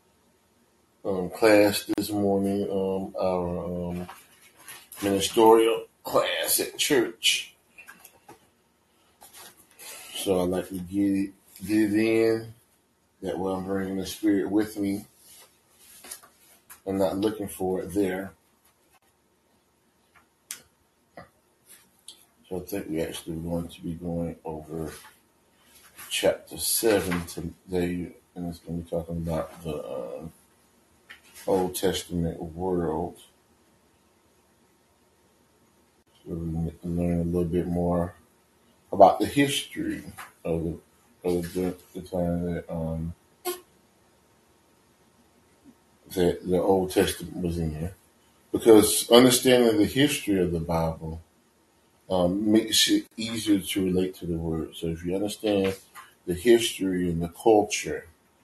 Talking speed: 110 wpm